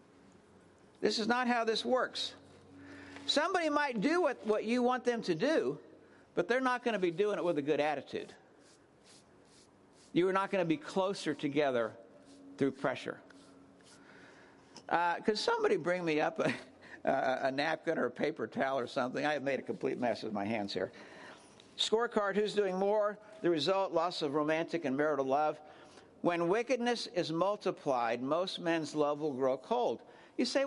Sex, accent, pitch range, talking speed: male, American, 170-250 Hz, 170 wpm